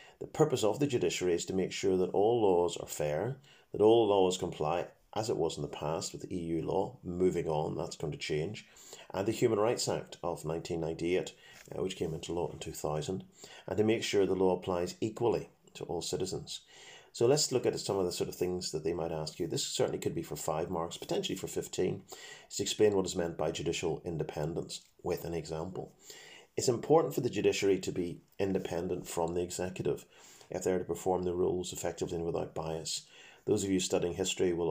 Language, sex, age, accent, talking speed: English, male, 40-59, British, 210 wpm